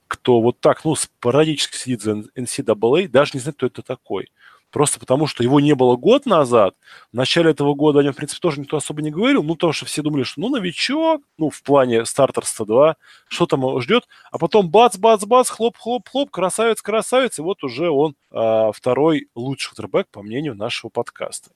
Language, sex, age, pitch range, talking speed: Russian, male, 20-39, 130-180 Hz, 190 wpm